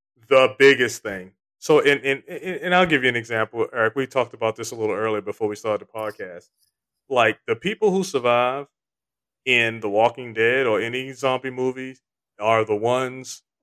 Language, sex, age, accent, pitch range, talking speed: English, male, 30-49, American, 110-140 Hz, 185 wpm